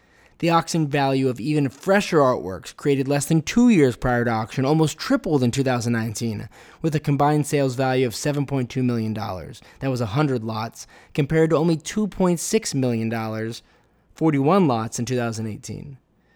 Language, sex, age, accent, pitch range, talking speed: English, male, 20-39, American, 120-155 Hz, 145 wpm